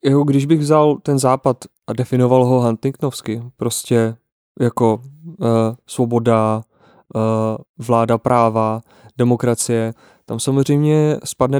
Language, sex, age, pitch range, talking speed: Czech, male, 20-39, 120-140 Hz, 95 wpm